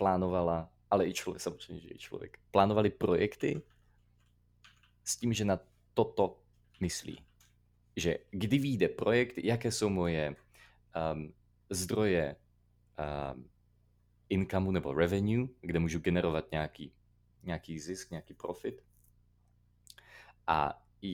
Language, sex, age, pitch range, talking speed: Slovak, male, 30-49, 90-110 Hz, 105 wpm